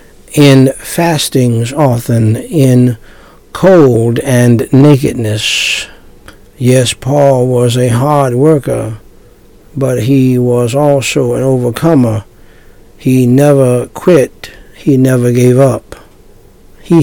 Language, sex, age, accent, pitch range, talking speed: English, male, 60-79, American, 115-135 Hz, 95 wpm